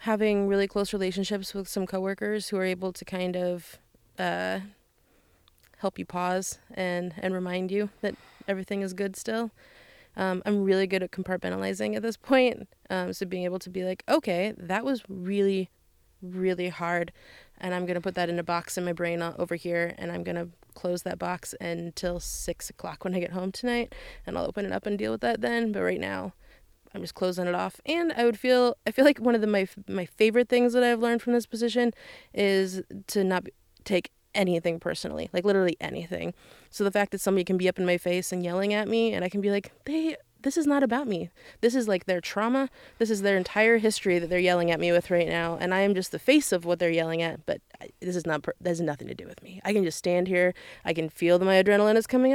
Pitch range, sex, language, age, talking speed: 175-210 Hz, female, English, 20-39, 230 wpm